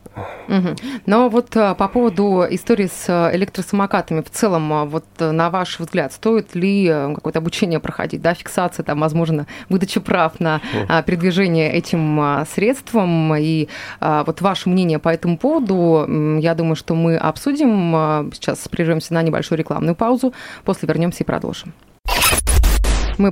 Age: 20-39